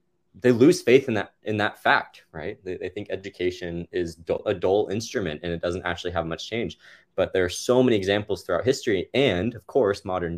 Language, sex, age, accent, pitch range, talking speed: English, male, 20-39, American, 85-110 Hz, 215 wpm